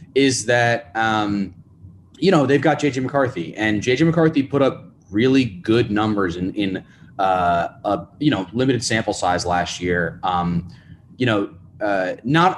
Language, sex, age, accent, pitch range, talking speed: English, male, 20-39, American, 95-130 Hz, 155 wpm